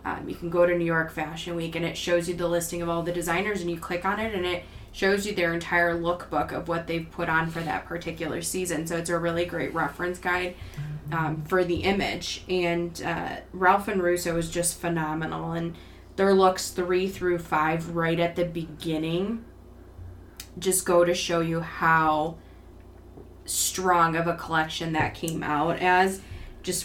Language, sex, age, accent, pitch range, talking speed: English, female, 20-39, American, 160-180 Hz, 190 wpm